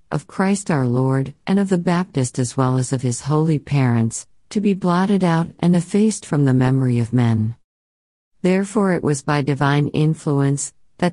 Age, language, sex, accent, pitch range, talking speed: 50-69, English, female, American, 130-170 Hz, 180 wpm